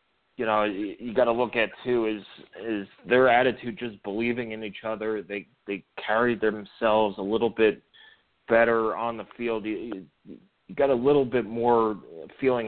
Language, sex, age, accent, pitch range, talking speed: English, male, 30-49, American, 110-125 Hz, 170 wpm